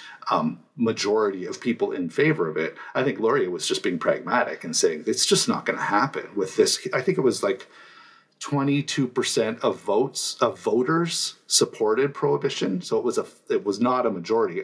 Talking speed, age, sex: 200 wpm, 40-59, male